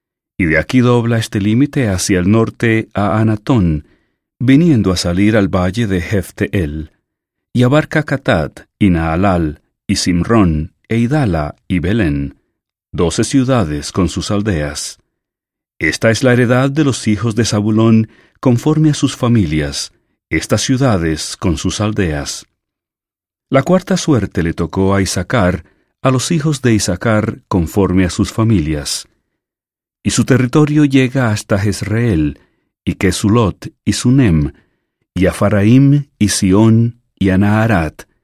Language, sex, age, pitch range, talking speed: English, male, 40-59, 90-125 Hz, 130 wpm